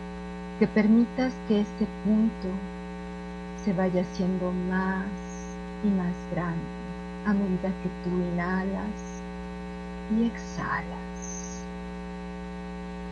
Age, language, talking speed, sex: 40-59, Spanish, 85 wpm, female